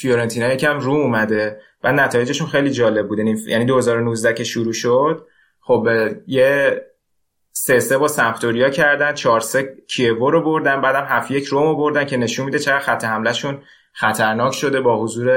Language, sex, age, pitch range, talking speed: Persian, male, 20-39, 110-140 Hz, 170 wpm